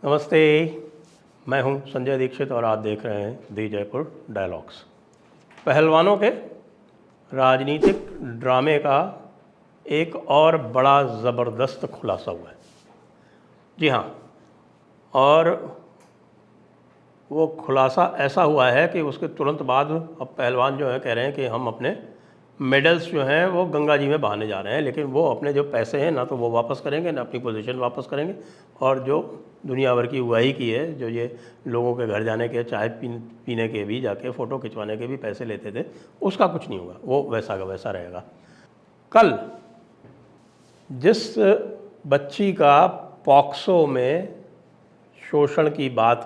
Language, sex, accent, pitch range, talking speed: English, male, Indian, 120-150 Hz, 135 wpm